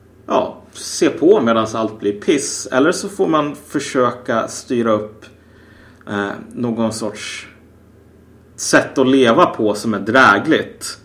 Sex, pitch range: male, 100-130 Hz